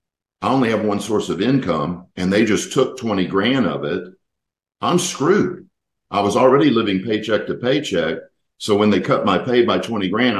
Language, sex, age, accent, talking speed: English, male, 50-69, American, 190 wpm